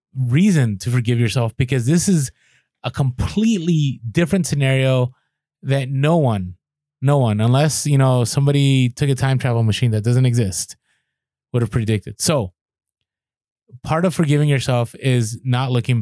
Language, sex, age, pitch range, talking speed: English, male, 20-39, 120-145 Hz, 145 wpm